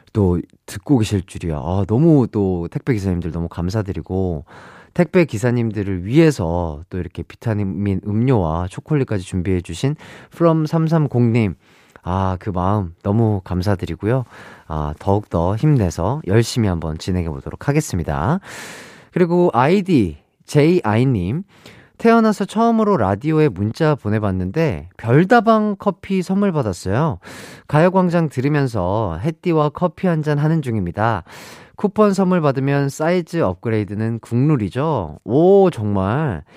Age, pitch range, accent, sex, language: 30-49, 95-155 Hz, native, male, Korean